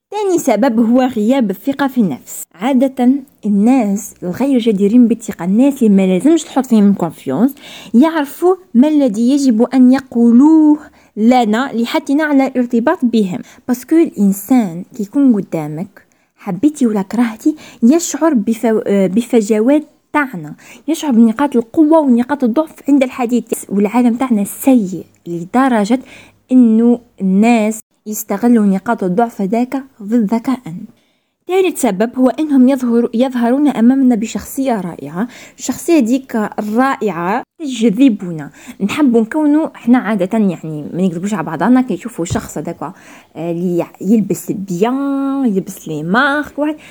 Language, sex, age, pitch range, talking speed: Arabic, female, 20-39, 215-275 Hz, 115 wpm